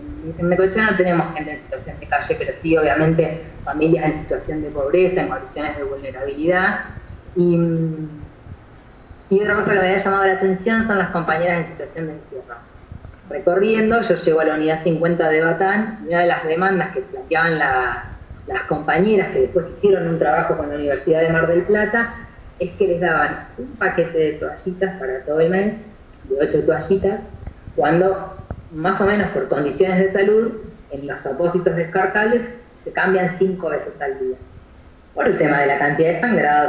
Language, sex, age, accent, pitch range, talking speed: Spanish, female, 20-39, Argentinian, 155-195 Hz, 180 wpm